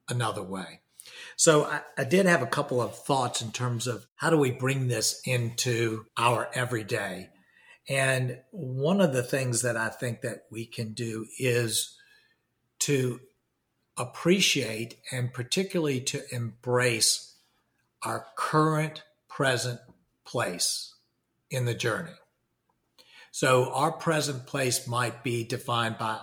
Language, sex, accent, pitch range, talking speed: English, male, American, 115-135 Hz, 130 wpm